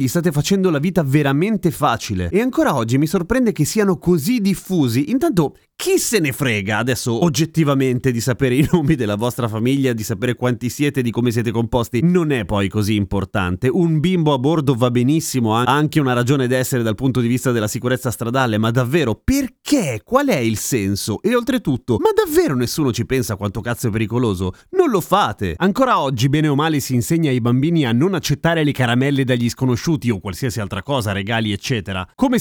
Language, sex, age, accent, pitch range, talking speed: Italian, male, 30-49, native, 115-165 Hz, 195 wpm